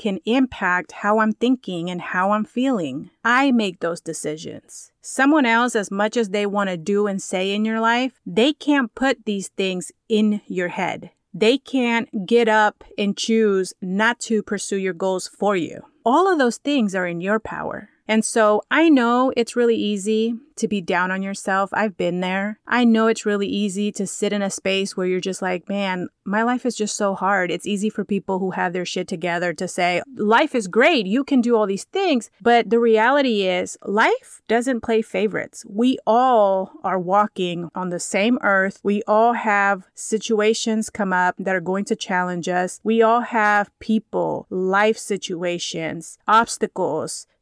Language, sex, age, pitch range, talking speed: English, female, 30-49, 190-230 Hz, 185 wpm